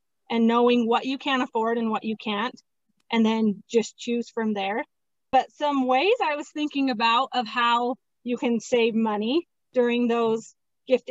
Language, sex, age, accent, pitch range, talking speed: English, female, 30-49, American, 220-260 Hz, 175 wpm